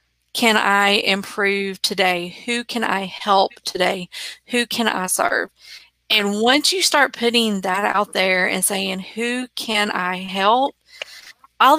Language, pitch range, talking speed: English, 190-230 Hz, 145 wpm